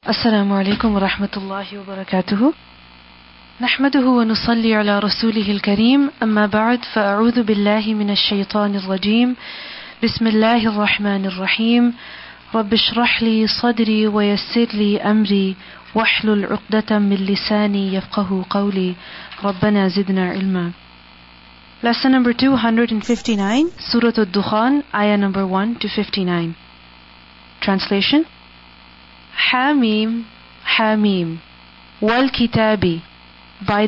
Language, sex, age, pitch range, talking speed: English, female, 30-49, 185-230 Hz, 105 wpm